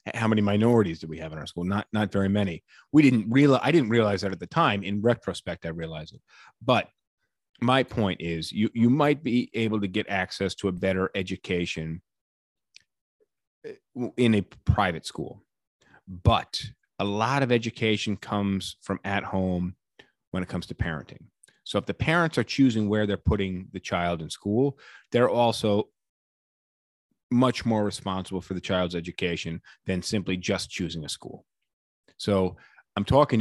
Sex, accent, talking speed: male, American, 165 wpm